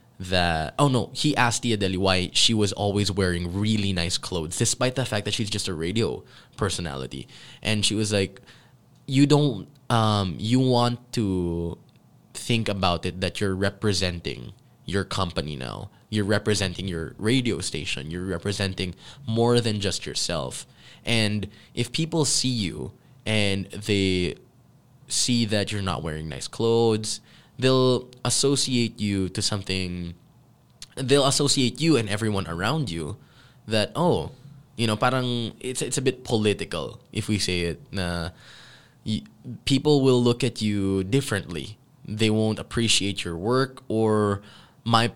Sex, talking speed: male, 145 wpm